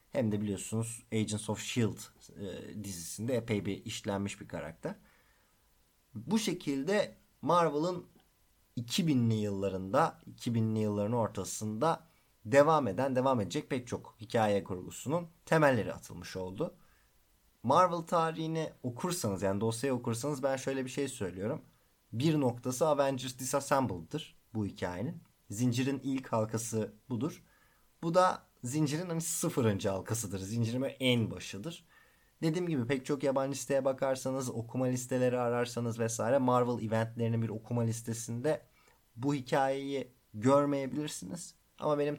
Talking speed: 120 wpm